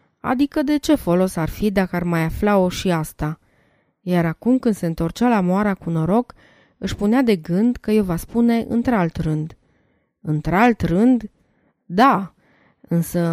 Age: 20-39